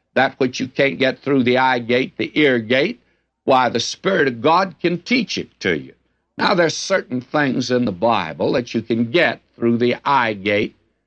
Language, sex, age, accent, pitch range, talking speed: English, male, 60-79, American, 115-145 Hz, 205 wpm